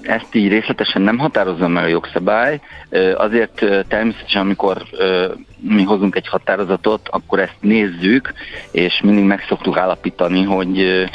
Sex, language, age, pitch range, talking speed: male, Hungarian, 50-69, 90-100 Hz, 130 wpm